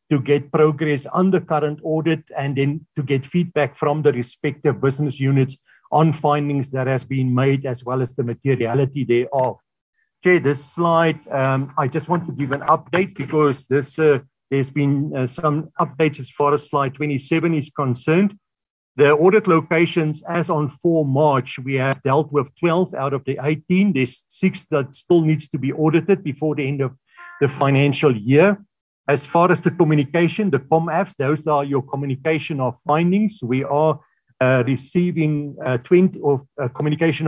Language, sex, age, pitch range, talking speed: English, male, 50-69, 135-160 Hz, 170 wpm